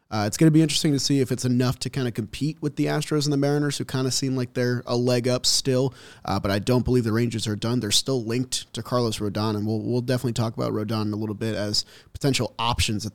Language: English